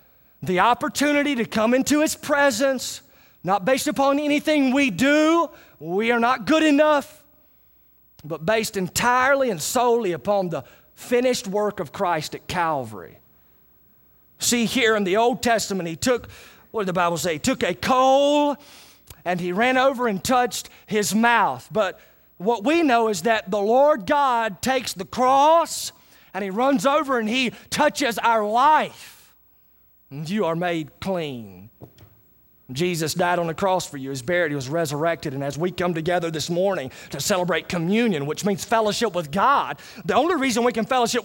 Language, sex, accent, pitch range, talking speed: English, male, American, 180-260 Hz, 165 wpm